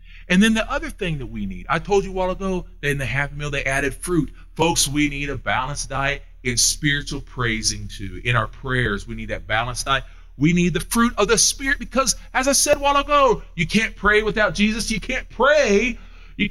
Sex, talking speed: male, 230 wpm